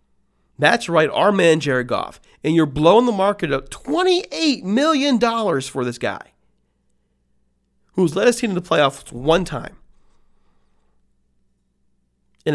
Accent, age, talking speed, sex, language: American, 40-59, 135 wpm, male, English